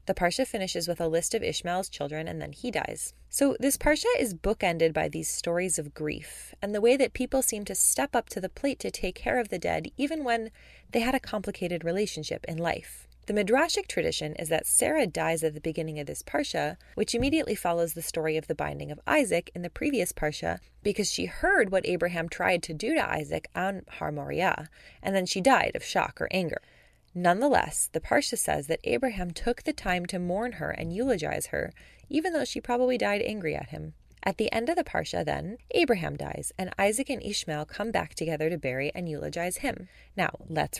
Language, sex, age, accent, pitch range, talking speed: English, female, 20-39, American, 165-240 Hz, 210 wpm